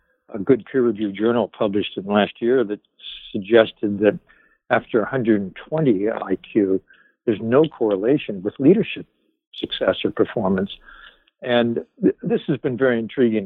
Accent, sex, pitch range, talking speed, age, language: American, male, 105-130 Hz, 125 wpm, 60-79, English